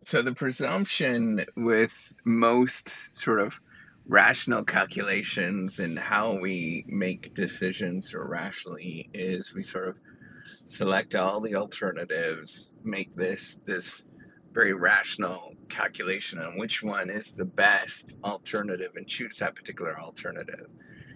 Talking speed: 120 wpm